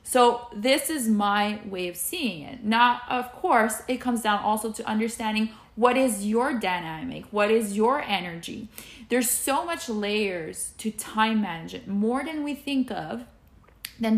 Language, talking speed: English, 160 wpm